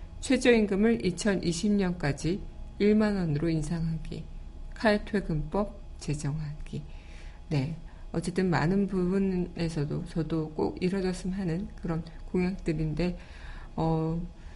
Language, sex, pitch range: Korean, female, 155-200 Hz